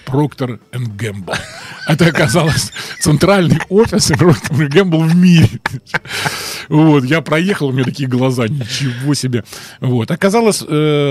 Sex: male